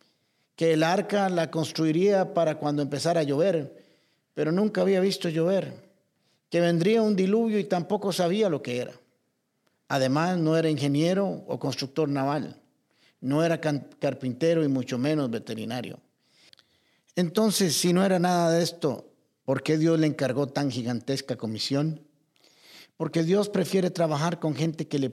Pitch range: 130-185 Hz